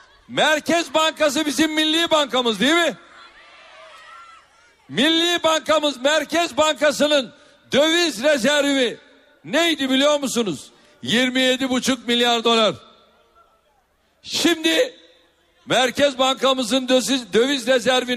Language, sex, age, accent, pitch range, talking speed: Turkish, male, 60-79, native, 260-315 Hz, 80 wpm